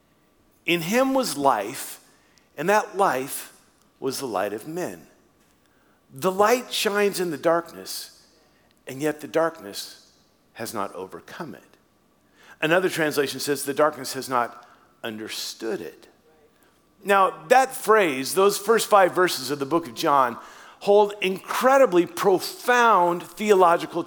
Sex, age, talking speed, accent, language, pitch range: male, 50-69, 125 wpm, American, English, 165-225 Hz